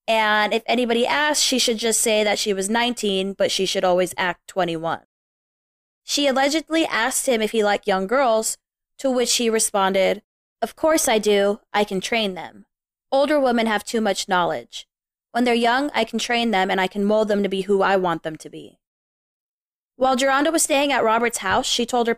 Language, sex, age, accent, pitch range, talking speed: English, female, 20-39, American, 195-245 Hz, 205 wpm